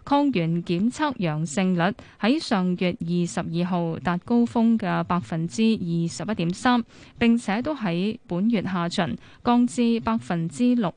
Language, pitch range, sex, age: Chinese, 175-235 Hz, female, 10-29